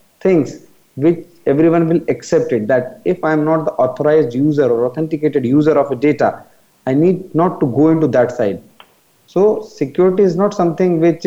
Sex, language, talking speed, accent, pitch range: male, English, 175 wpm, Indian, 135-170 Hz